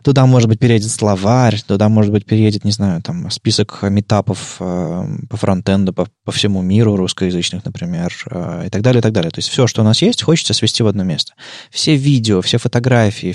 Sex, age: male, 20-39